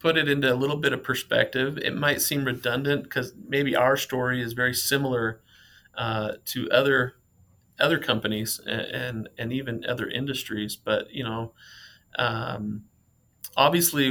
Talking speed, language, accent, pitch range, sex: 150 wpm, English, American, 110-130 Hz, male